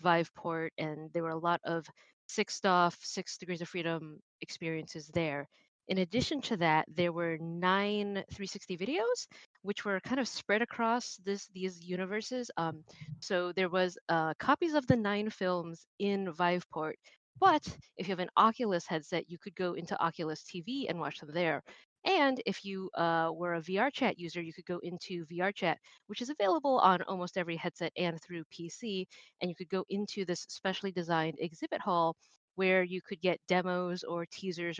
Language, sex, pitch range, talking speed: English, female, 170-200 Hz, 170 wpm